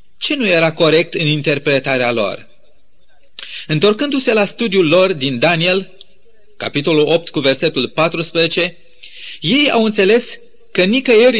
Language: Romanian